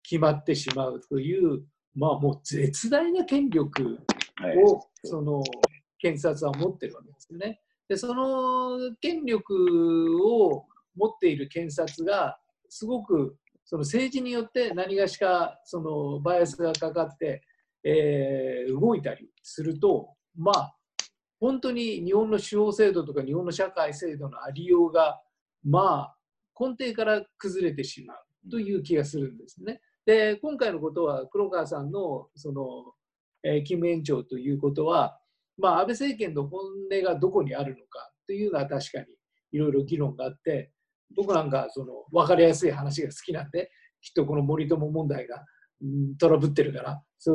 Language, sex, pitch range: Japanese, male, 145-225 Hz